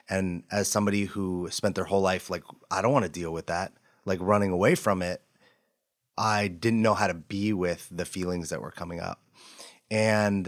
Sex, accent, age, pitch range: male, American, 30-49, 95-120 Hz